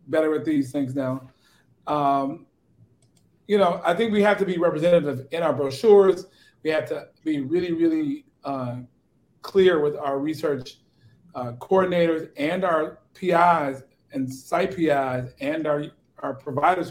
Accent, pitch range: American, 135-175 Hz